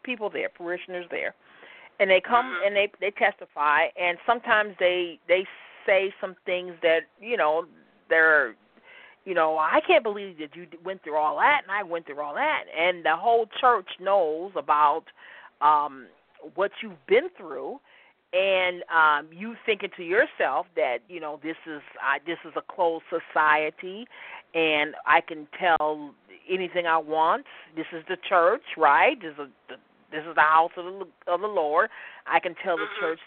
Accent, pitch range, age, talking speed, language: American, 155-205 Hz, 40-59, 170 wpm, English